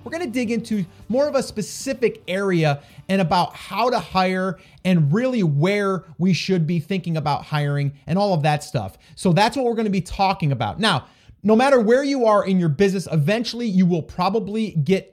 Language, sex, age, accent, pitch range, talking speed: English, male, 30-49, American, 150-195 Hz, 205 wpm